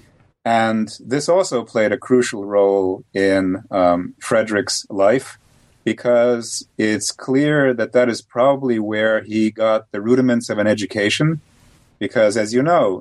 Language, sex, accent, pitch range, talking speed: English, male, American, 105-125 Hz, 140 wpm